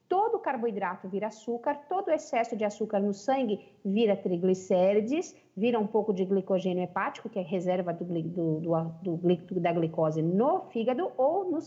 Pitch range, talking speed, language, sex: 205-320 Hz, 170 wpm, Portuguese, female